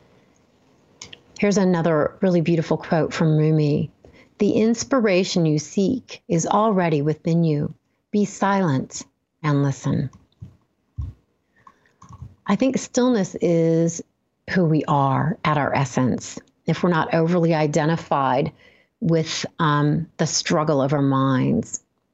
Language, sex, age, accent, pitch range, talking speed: English, female, 40-59, American, 150-190 Hz, 110 wpm